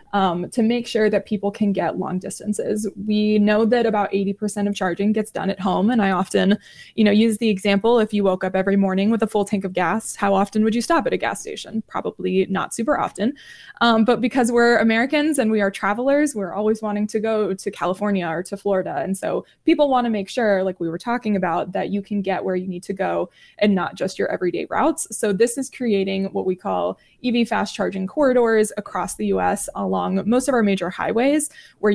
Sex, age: female, 20-39